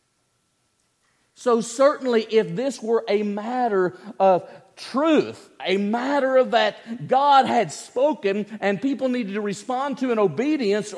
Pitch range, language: 135-220 Hz, English